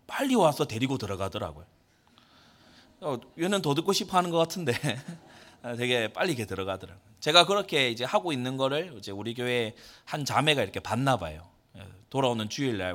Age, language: 30-49, Korean